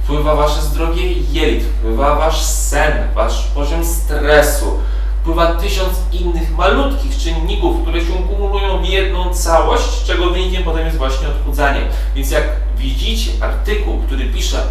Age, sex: 30-49, male